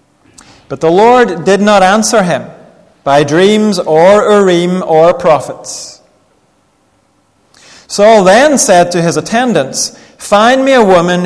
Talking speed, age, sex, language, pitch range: 125 wpm, 30-49, male, French, 155-205 Hz